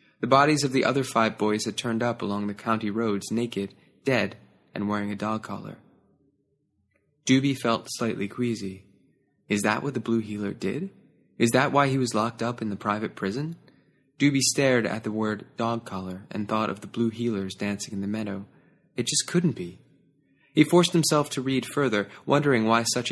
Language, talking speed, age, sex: English, 190 wpm, 20-39, male